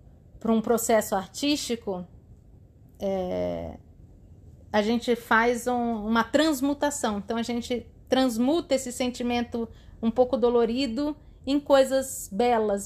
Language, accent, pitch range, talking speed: Portuguese, Brazilian, 215-275 Hz, 105 wpm